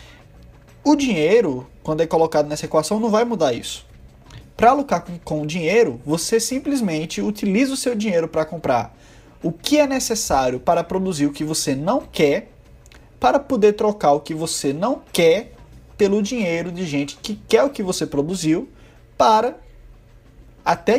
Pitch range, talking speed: 165-225 Hz, 160 wpm